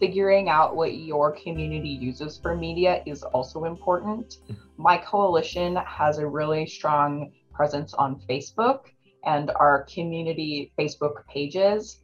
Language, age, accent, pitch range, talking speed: English, 20-39, American, 150-185 Hz, 125 wpm